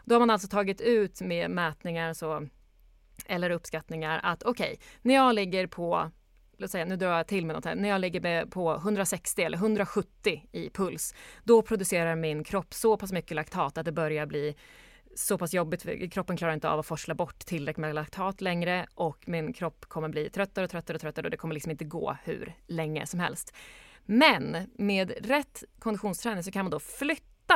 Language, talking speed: English, 195 wpm